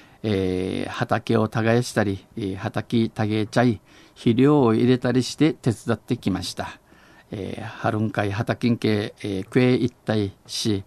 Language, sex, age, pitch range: Japanese, male, 50-69, 105-125 Hz